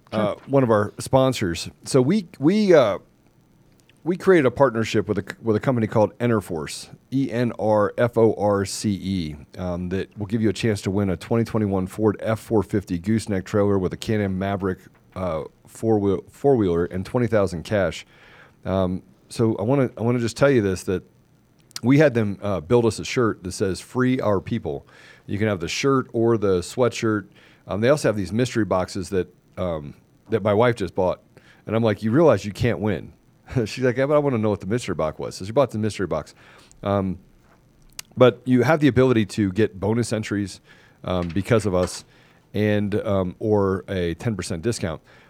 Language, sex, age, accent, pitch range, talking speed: English, male, 40-59, American, 95-115 Hz, 200 wpm